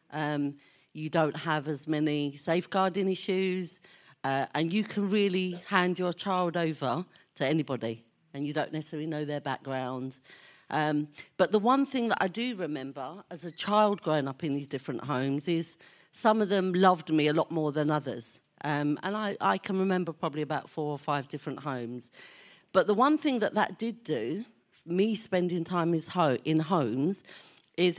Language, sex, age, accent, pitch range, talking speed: English, female, 40-59, British, 150-190 Hz, 175 wpm